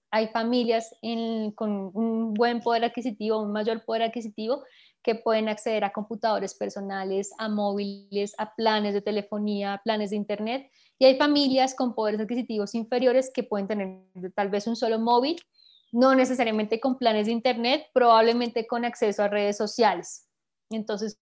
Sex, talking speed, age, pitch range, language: female, 160 wpm, 20-39, 210-250 Hz, Spanish